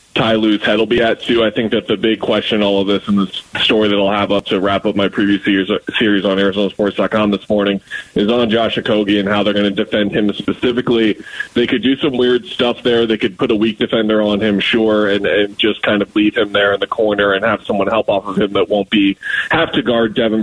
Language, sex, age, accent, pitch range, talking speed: English, male, 20-39, American, 100-110 Hz, 250 wpm